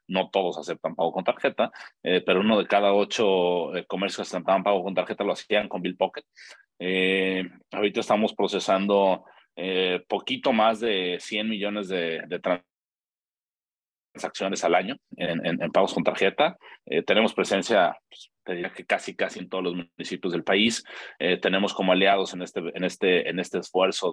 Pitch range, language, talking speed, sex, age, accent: 85-95 Hz, English, 175 wpm, male, 30-49, Mexican